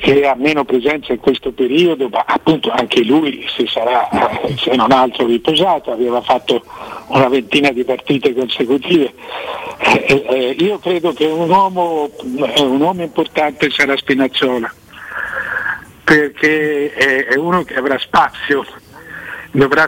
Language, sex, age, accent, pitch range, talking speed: Italian, male, 60-79, native, 130-160 Hz, 140 wpm